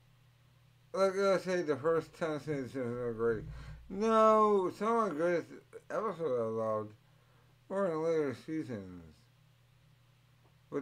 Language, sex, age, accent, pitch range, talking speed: English, male, 50-69, American, 115-135 Hz, 130 wpm